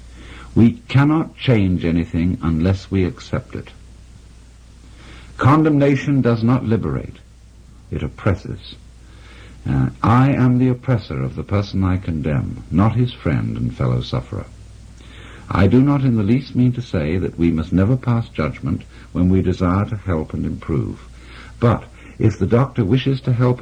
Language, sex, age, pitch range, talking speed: English, male, 60-79, 85-125 Hz, 150 wpm